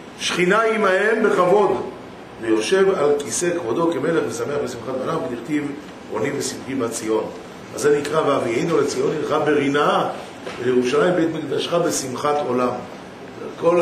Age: 50-69